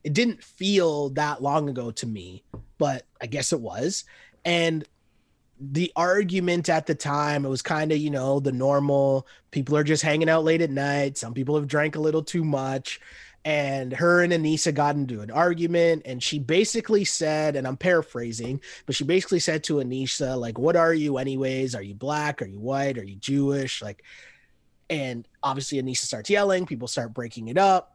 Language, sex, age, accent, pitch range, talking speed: English, male, 30-49, American, 130-165 Hz, 190 wpm